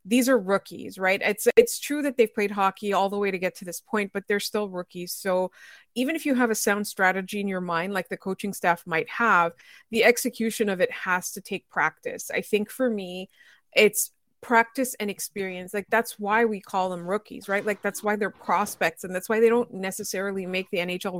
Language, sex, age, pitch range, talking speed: English, female, 30-49, 190-230 Hz, 220 wpm